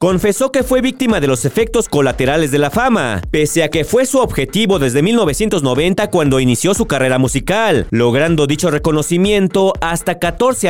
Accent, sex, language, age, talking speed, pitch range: Mexican, male, Spanish, 40-59, 165 wpm, 140-200 Hz